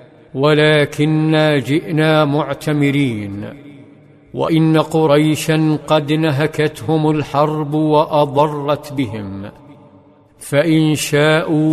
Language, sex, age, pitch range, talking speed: Arabic, male, 50-69, 145-155 Hz, 60 wpm